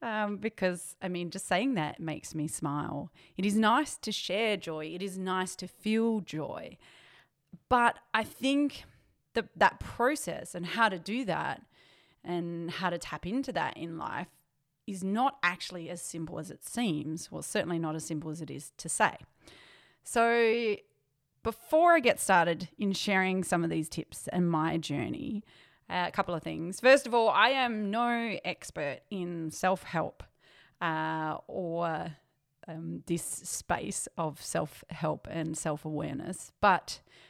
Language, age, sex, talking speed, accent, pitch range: English, 30-49, female, 155 wpm, Australian, 160-215 Hz